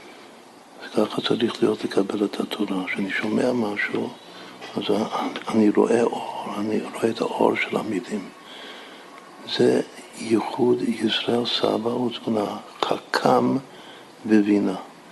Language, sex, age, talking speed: Hebrew, male, 60-79, 105 wpm